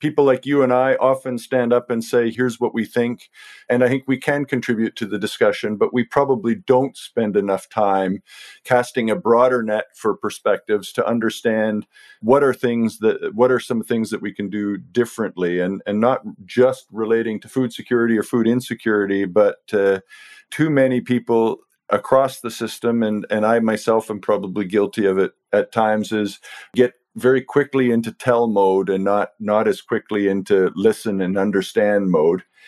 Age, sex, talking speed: 50-69, male, 180 wpm